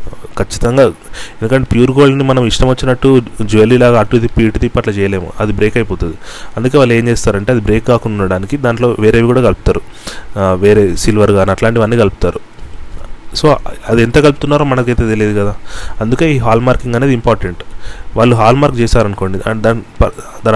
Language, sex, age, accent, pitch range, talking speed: Telugu, male, 30-49, native, 105-120 Hz, 150 wpm